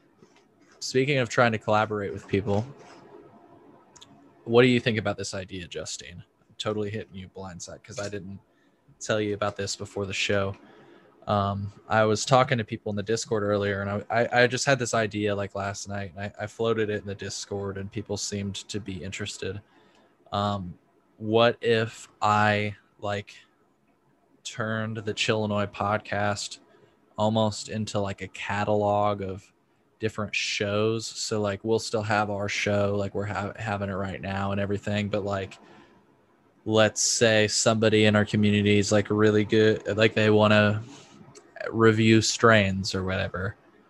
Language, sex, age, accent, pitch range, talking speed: English, male, 20-39, American, 100-110 Hz, 160 wpm